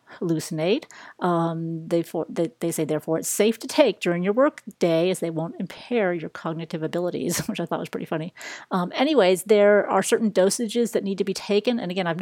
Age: 40-59